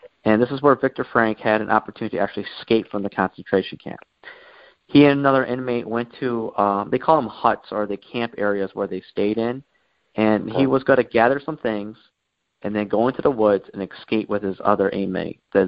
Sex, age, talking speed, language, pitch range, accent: male, 30-49, 215 wpm, English, 100-120 Hz, American